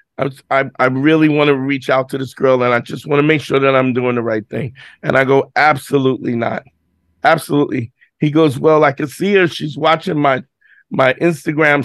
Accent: American